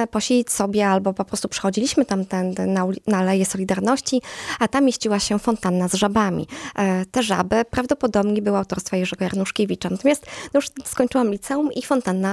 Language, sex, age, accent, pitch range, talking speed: Polish, female, 20-39, native, 190-240 Hz, 160 wpm